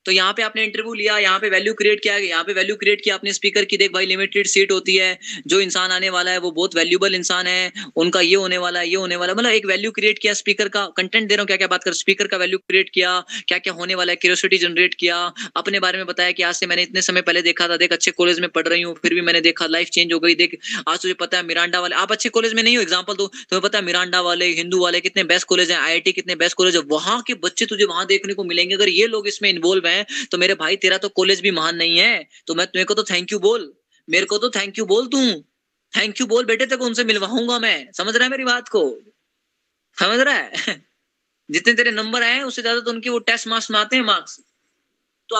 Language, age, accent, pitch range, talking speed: Hindi, 20-39, native, 180-225 Hz, 270 wpm